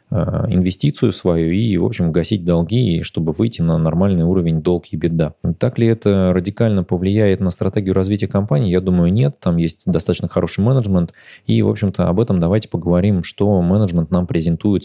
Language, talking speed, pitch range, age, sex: Russian, 175 wpm, 85-100 Hz, 20-39, male